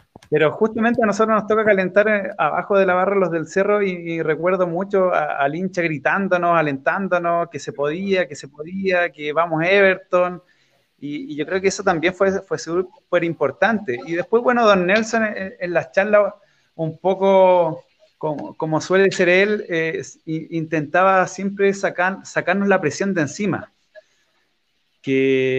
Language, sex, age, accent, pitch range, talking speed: Spanish, male, 30-49, Argentinian, 160-200 Hz, 160 wpm